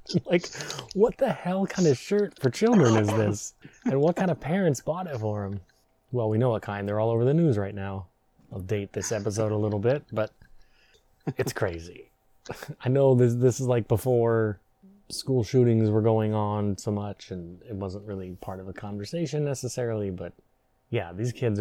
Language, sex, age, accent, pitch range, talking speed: English, male, 20-39, American, 100-125 Hz, 190 wpm